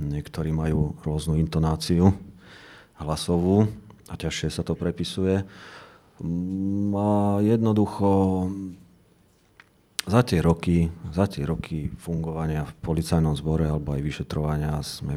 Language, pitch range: Slovak, 80-95 Hz